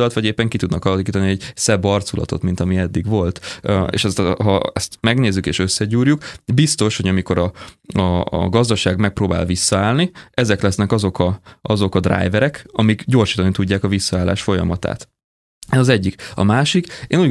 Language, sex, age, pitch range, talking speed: Hungarian, male, 20-39, 95-115 Hz, 165 wpm